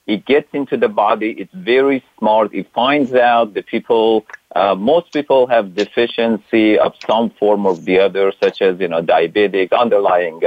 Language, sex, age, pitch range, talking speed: English, male, 50-69, 110-135 Hz, 170 wpm